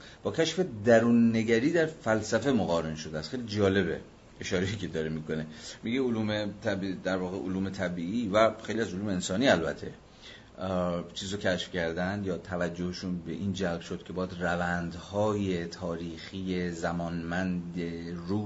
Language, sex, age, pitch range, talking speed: Persian, male, 30-49, 90-110 Hz, 145 wpm